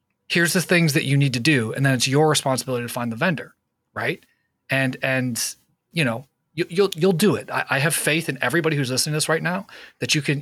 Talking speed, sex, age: 240 wpm, male, 30-49